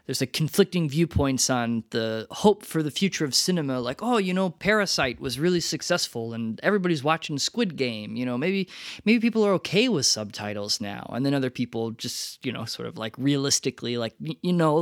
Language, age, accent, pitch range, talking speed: English, 20-39, American, 120-175 Hz, 200 wpm